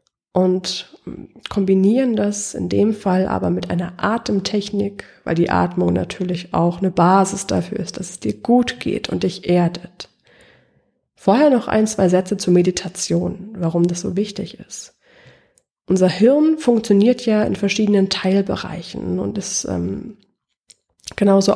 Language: German